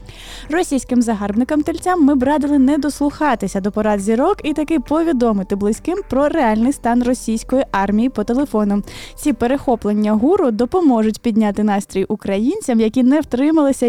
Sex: female